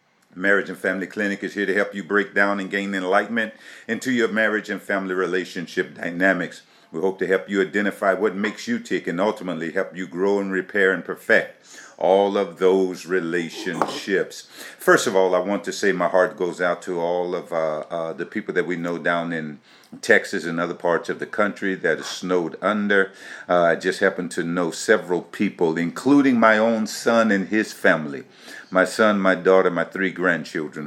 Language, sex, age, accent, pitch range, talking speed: English, male, 50-69, American, 90-100 Hz, 195 wpm